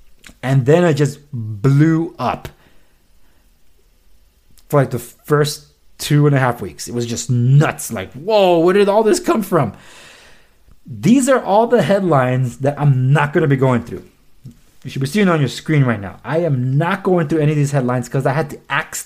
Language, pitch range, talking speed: English, 125-170 Hz, 200 wpm